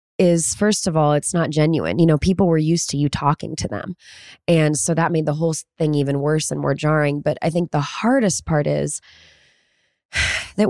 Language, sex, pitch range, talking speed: English, female, 140-170 Hz, 210 wpm